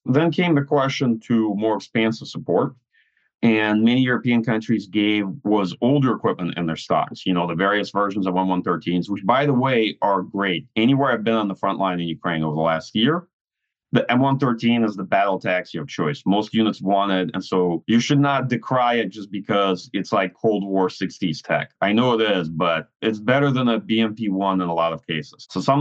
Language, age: Ukrainian, 30-49